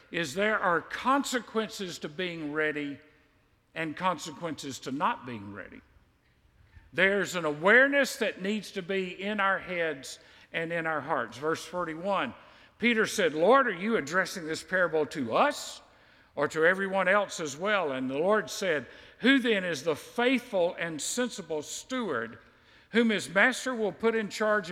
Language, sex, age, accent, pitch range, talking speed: English, male, 50-69, American, 165-220 Hz, 155 wpm